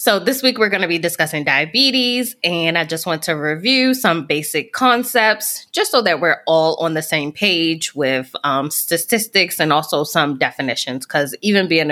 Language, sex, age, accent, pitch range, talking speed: English, female, 20-39, American, 150-200 Hz, 185 wpm